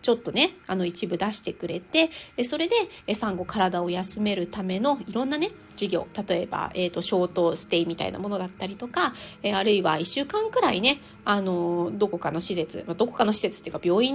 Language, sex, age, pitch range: Japanese, female, 30-49, 190-265 Hz